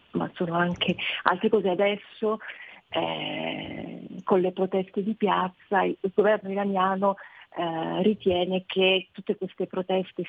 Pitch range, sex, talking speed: 175-200 Hz, female, 120 wpm